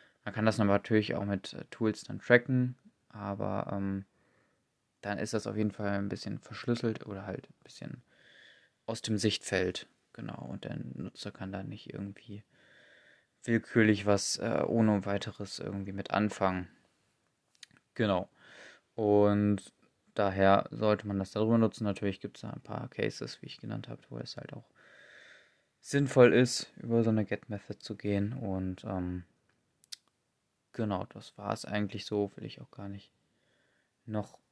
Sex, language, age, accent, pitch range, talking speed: male, German, 20-39, German, 100-110 Hz, 155 wpm